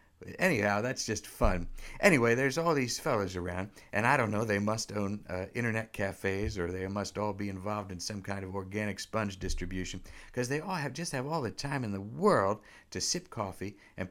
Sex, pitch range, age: male, 90-120 Hz, 60-79